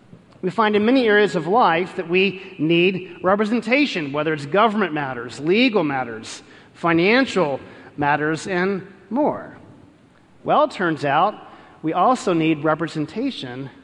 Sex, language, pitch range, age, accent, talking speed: male, English, 160-220 Hz, 40-59, American, 125 wpm